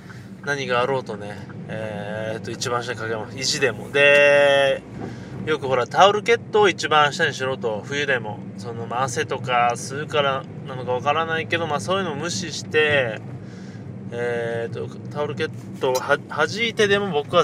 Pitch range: 120-180 Hz